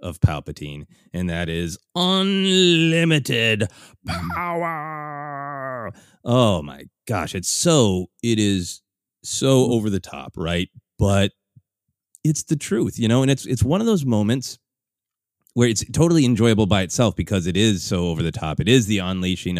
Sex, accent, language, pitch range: male, American, English, 90-130 Hz